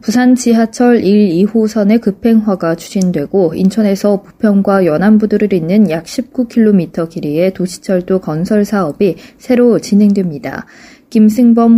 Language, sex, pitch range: Korean, female, 185-230 Hz